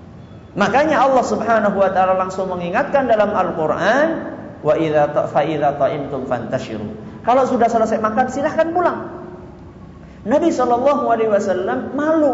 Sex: male